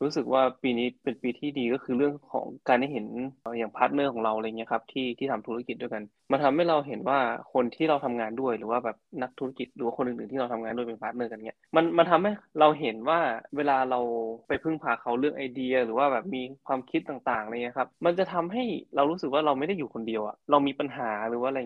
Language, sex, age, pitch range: Thai, male, 20-39, 115-140 Hz